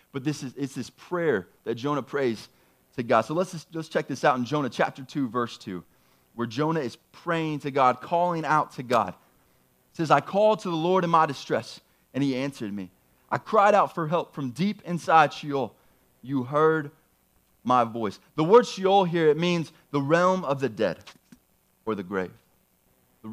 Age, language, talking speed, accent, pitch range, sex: 30-49, English, 195 wpm, American, 150-215 Hz, male